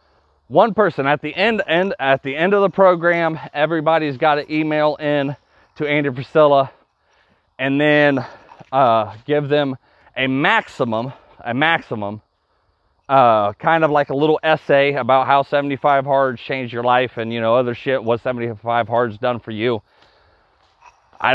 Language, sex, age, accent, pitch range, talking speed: English, male, 30-49, American, 120-160 Hz, 155 wpm